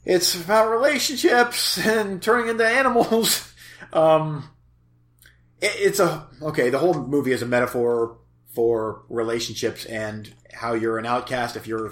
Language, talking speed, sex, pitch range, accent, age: English, 135 wpm, male, 120-180 Hz, American, 30-49